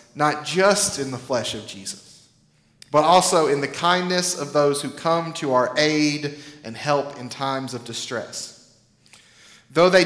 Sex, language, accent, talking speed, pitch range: male, English, American, 160 wpm, 135-175 Hz